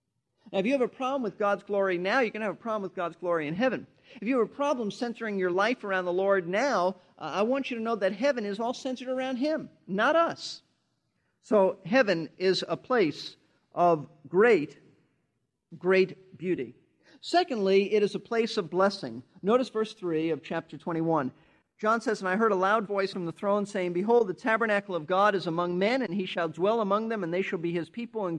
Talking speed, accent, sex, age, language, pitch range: 220 wpm, American, male, 50-69, English, 175-225 Hz